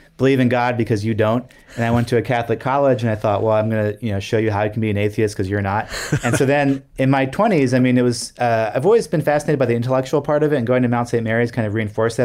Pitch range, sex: 110-130 Hz, male